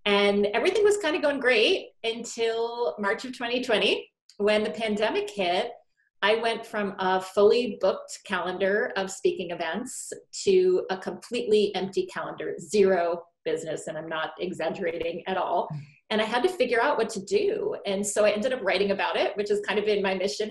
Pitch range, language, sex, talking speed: 190-240 Hz, English, female, 180 wpm